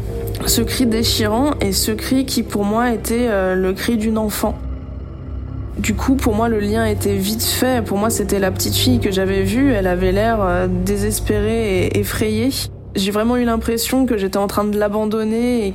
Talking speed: 185 wpm